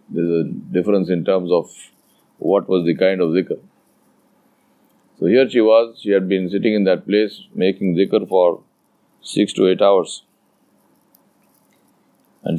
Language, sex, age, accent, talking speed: English, male, 50-69, Indian, 155 wpm